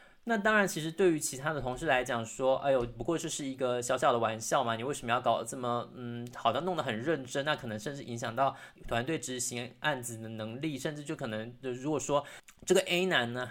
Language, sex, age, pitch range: Chinese, male, 20-39, 120-150 Hz